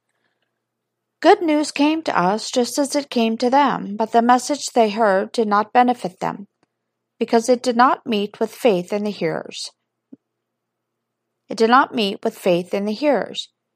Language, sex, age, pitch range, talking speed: English, female, 50-69, 205-255 Hz, 170 wpm